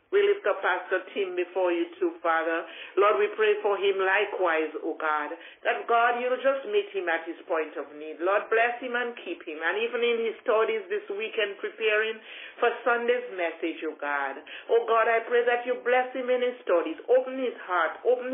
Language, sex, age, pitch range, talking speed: English, male, 60-79, 180-245 Hz, 215 wpm